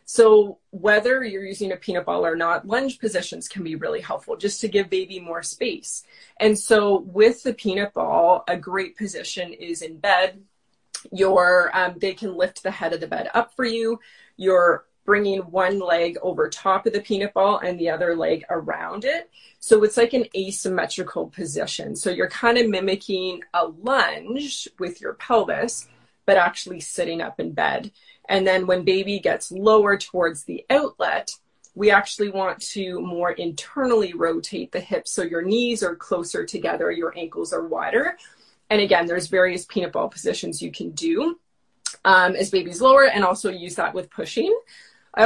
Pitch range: 180-230 Hz